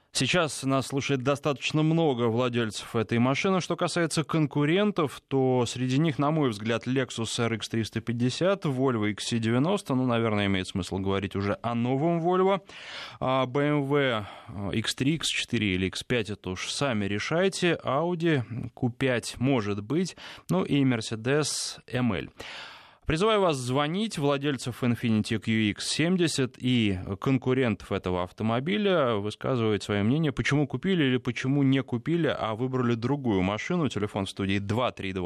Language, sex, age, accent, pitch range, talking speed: Russian, male, 20-39, native, 110-145 Hz, 130 wpm